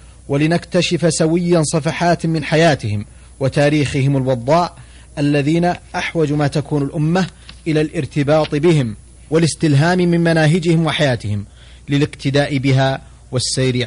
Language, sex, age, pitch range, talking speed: Arabic, male, 30-49, 120-155 Hz, 95 wpm